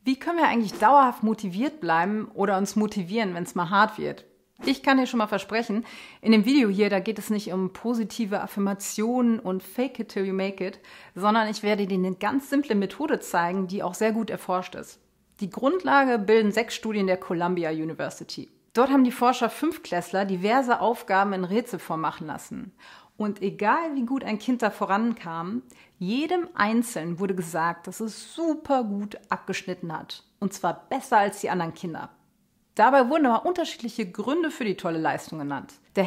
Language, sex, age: German, female, 40-59